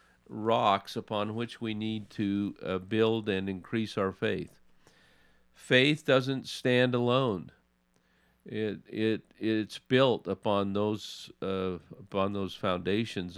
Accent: American